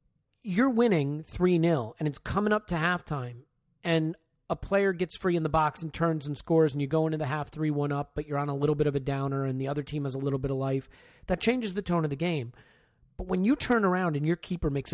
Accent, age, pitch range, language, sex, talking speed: American, 30-49, 140-185 Hz, English, male, 255 wpm